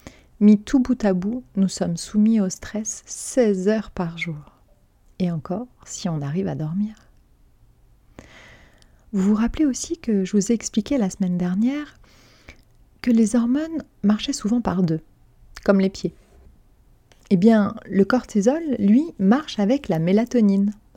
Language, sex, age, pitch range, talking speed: French, female, 30-49, 170-215 Hz, 150 wpm